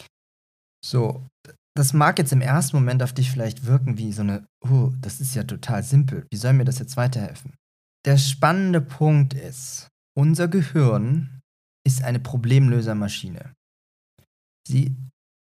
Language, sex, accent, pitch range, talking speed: German, male, German, 125-150 Hz, 140 wpm